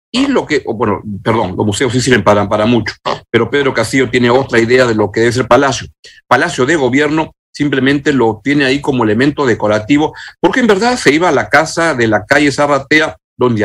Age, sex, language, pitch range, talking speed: 50-69, male, Spanish, 120-160 Hz, 205 wpm